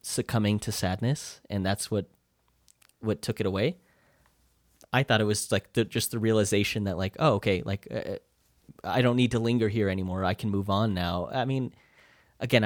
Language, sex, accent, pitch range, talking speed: English, male, American, 95-110 Hz, 190 wpm